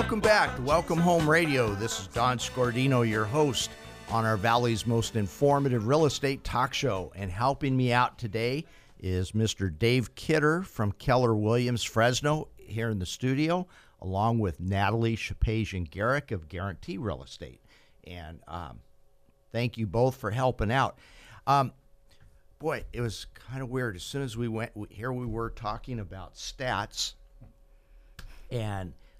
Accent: American